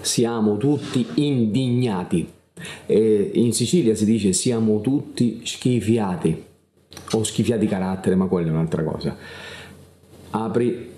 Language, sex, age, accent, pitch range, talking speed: Italian, male, 40-59, native, 105-125 Hz, 115 wpm